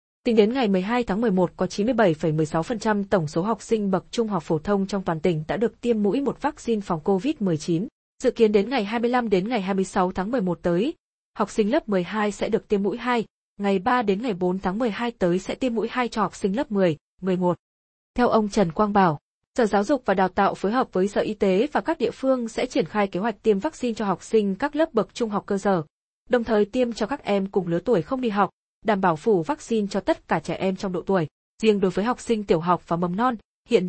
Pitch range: 185-240 Hz